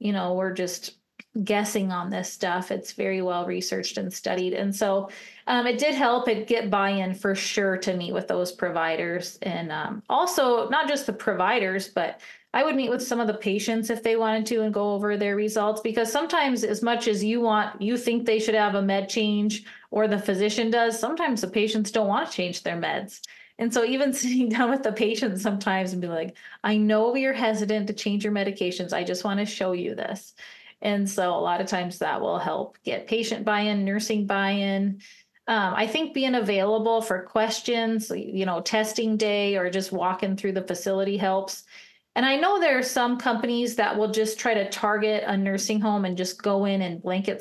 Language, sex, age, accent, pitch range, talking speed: English, female, 20-39, American, 195-230 Hz, 205 wpm